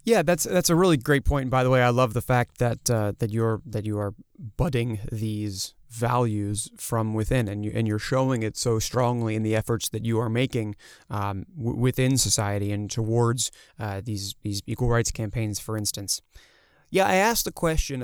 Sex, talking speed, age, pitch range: male, 205 wpm, 30-49, 115-145 Hz